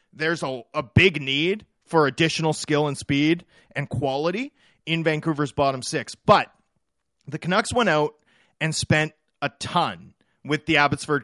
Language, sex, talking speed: English, male, 150 wpm